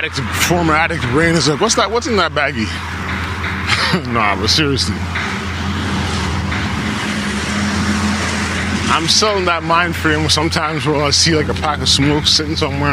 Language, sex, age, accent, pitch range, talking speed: English, male, 20-39, American, 90-110 Hz, 140 wpm